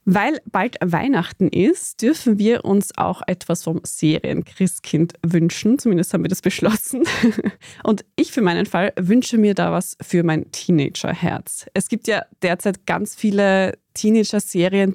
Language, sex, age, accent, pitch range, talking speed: German, female, 20-39, German, 175-215 Hz, 145 wpm